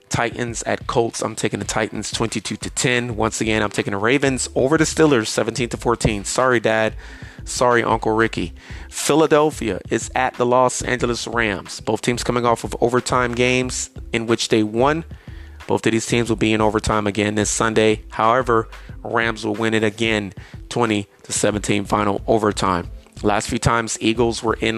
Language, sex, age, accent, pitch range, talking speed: English, male, 30-49, American, 105-120 Hz, 175 wpm